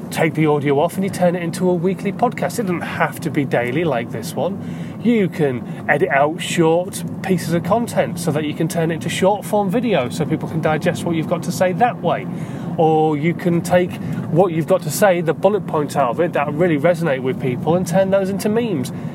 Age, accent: 30-49, British